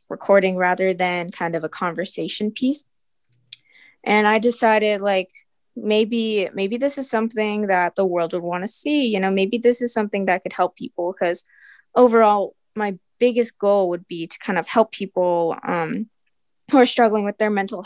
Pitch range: 190-225 Hz